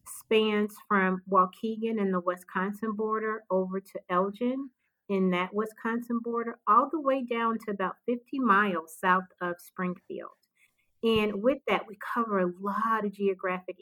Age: 40-59